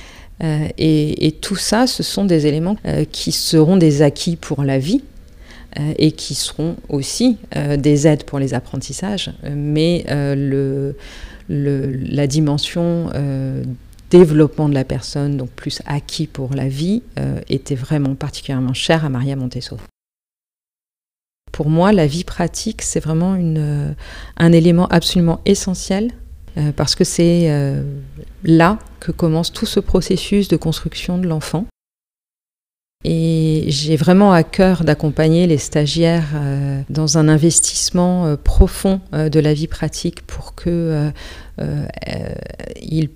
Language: French